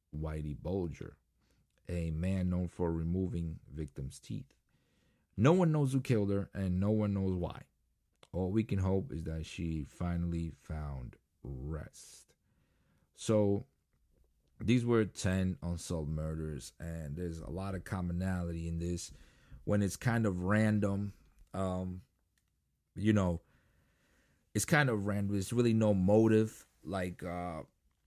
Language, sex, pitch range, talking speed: English, male, 85-105 Hz, 135 wpm